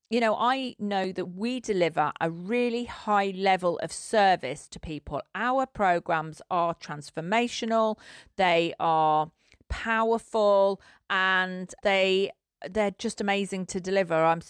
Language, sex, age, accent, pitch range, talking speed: English, female, 40-59, British, 165-200 Hz, 125 wpm